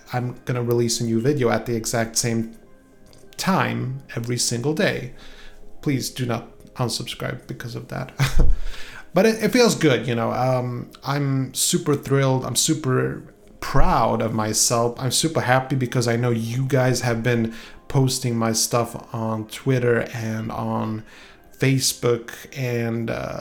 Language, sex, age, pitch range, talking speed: English, male, 30-49, 115-145 Hz, 145 wpm